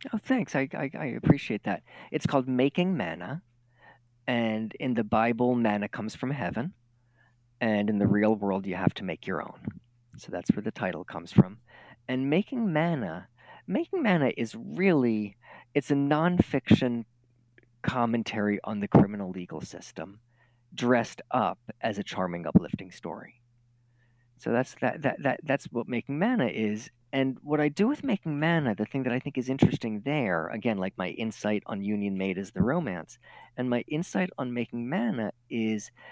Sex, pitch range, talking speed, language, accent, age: male, 110-145 Hz, 170 wpm, English, American, 40-59